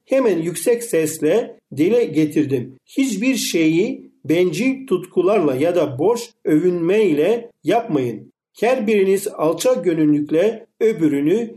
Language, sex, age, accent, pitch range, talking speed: Turkish, male, 50-69, native, 155-225 Hz, 100 wpm